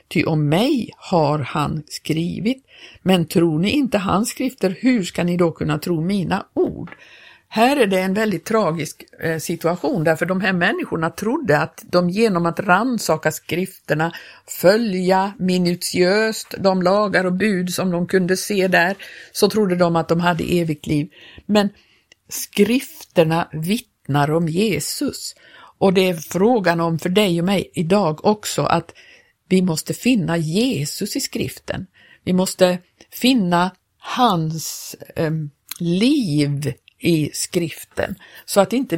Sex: female